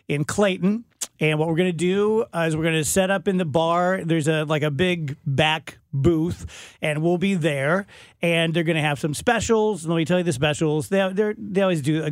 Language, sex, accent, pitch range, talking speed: English, male, American, 155-185 Hz, 240 wpm